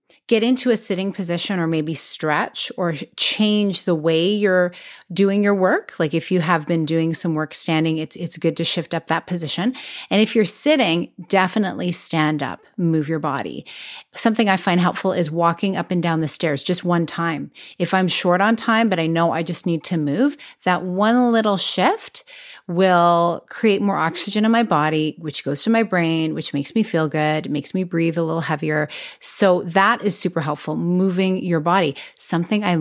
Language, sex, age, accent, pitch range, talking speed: English, female, 30-49, American, 160-205 Hz, 195 wpm